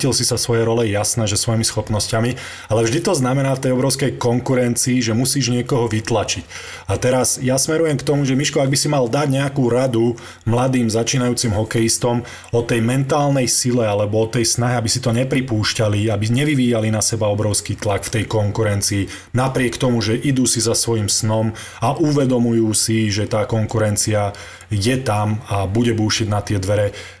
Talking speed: 180 wpm